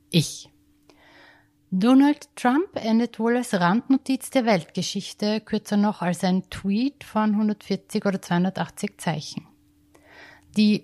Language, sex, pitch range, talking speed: German, female, 155-215 Hz, 110 wpm